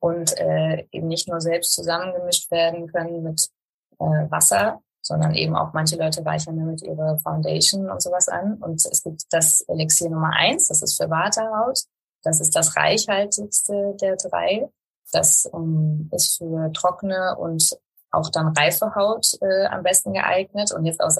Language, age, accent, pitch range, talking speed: German, 20-39, German, 160-185 Hz, 165 wpm